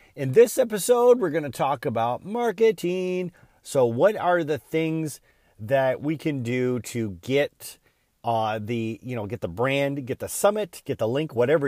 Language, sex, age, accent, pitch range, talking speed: English, male, 40-59, American, 115-150 Hz, 175 wpm